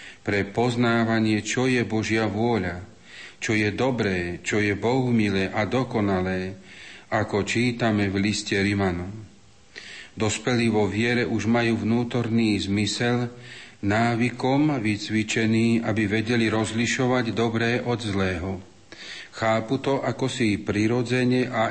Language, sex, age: Slovak, male, 40-59